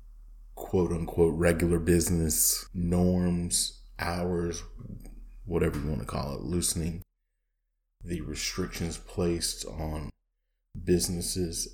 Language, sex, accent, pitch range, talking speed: English, male, American, 80-95 Hz, 85 wpm